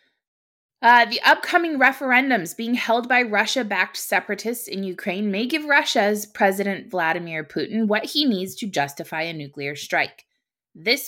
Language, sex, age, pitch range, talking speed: English, female, 20-39, 165-235 Hz, 140 wpm